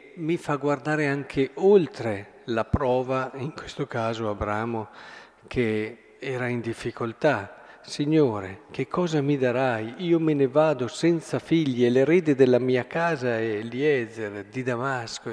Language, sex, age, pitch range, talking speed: Italian, male, 50-69, 120-160 Hz, 135 wpm